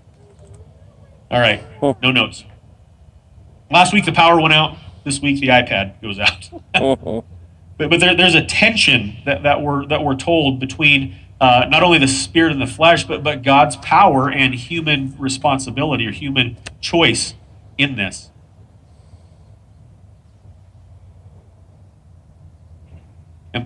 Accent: American